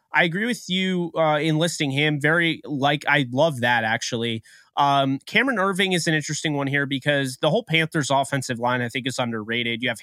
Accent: American